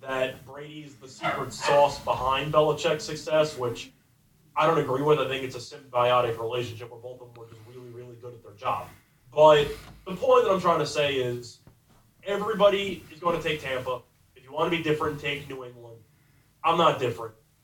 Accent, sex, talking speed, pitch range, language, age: American, male, 195 wpm, 125-155 Hz, English, 30-49